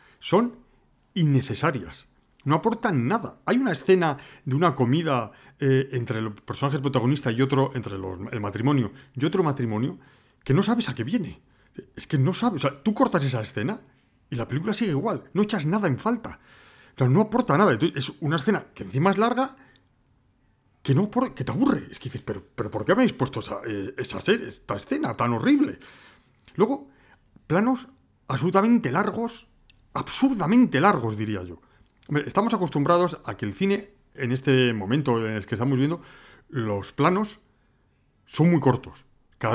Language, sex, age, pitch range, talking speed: Spanish, male, 40-59, 120-180 Hz, 175 wpm